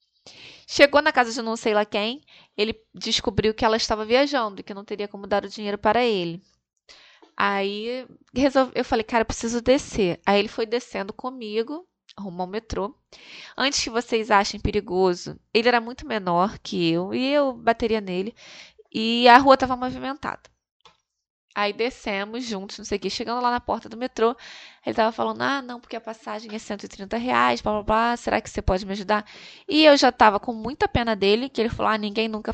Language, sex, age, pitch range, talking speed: Portuguese, female, 20-39, 200-250 Hz, 195 wpm